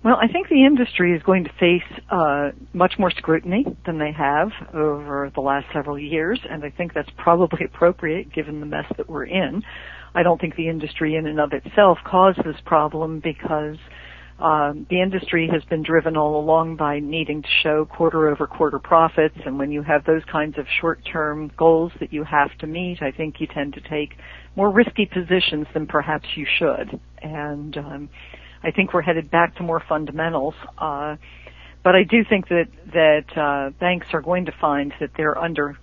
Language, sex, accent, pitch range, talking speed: English, female, American, 145-175 Hz, 190 wpm